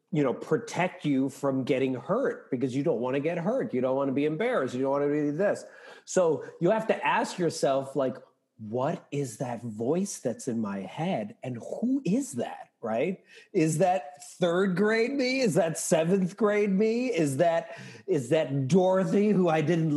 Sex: male